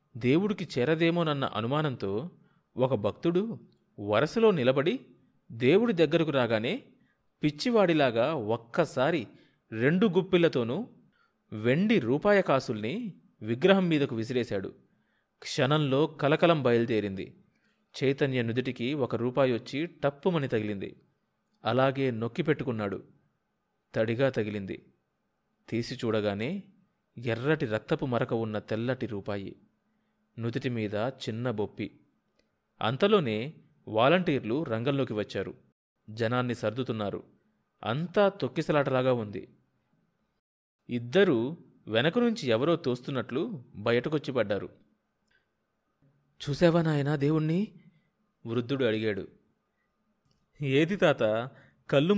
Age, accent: 30-49, native